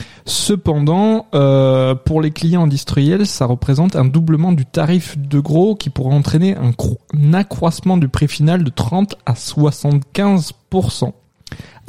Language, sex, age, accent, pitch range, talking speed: French, male, 20-39, French, 135-170 Hz, 140 wpm